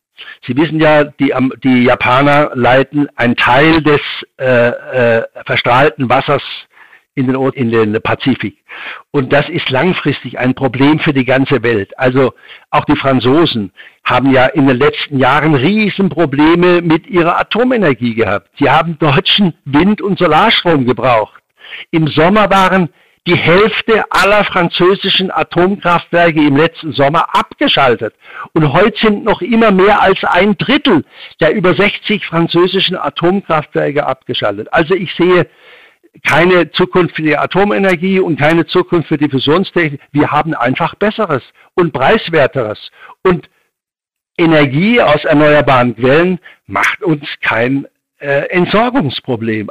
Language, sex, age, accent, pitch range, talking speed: German, male, 60-79, German, 140-185 Hz, 130 wpm